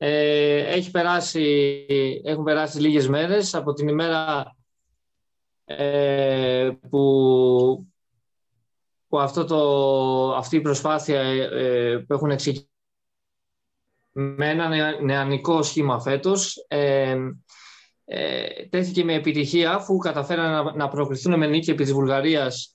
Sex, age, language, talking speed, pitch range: male, 20-39, Greek, 105 wpm, 130-155 Hz